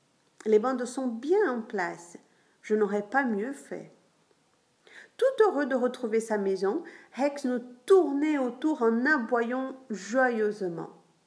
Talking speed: 130 wpm